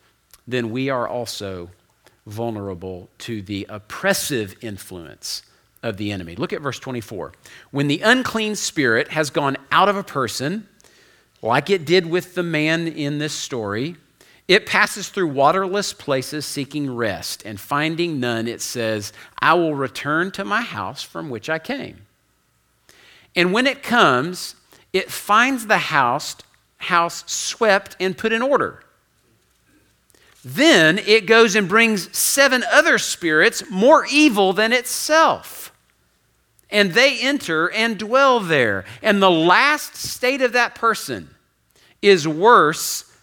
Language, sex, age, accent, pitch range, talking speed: English, male, 50-69, American, 140-205 Hz, 135 wpm